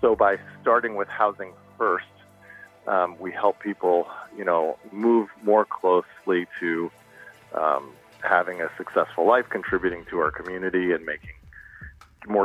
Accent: American